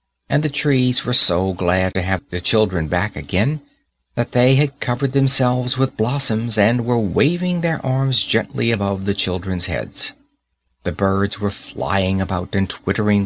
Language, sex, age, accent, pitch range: Korean, male, 60-79, American, 95-140 Hz